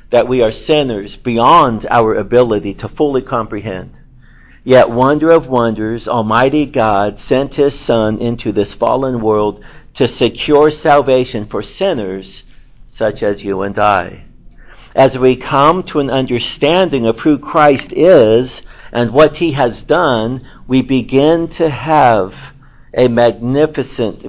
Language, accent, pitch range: English, American, 115-140 Hz